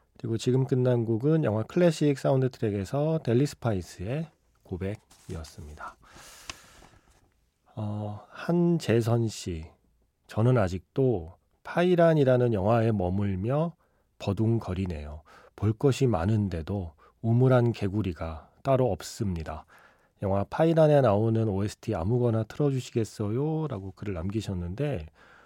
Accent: native